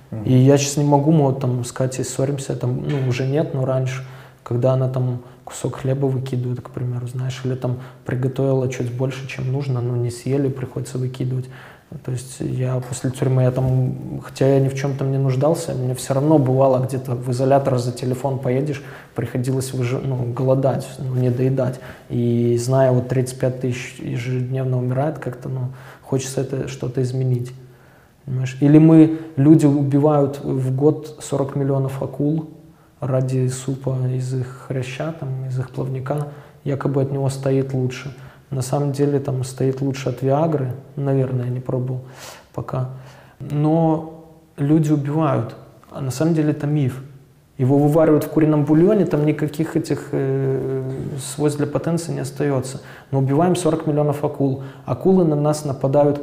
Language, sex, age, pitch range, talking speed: Russian, male, 20-39, 130-145 Hz, 160 wpm